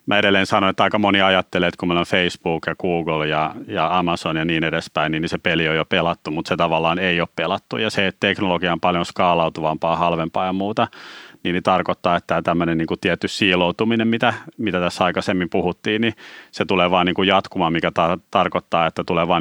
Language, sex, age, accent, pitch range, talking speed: Finnish, male, 30-49, native, 85-100 Hz, 205 wpm